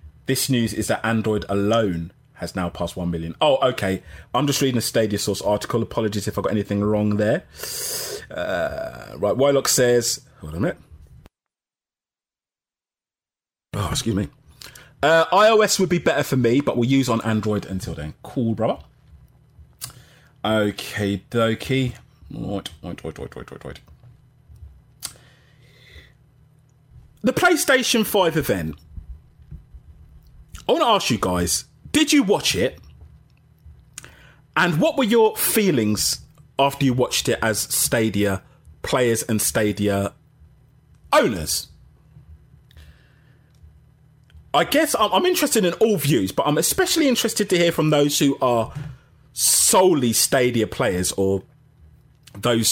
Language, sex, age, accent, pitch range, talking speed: English, male, 30-49, British, 100-140 Hz, 125 wpm